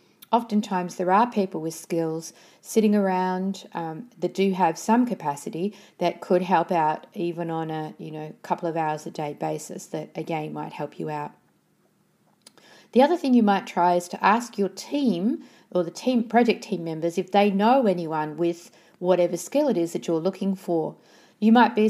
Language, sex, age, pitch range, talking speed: English, female, 40-59, 170-210 Hz, 185 wpm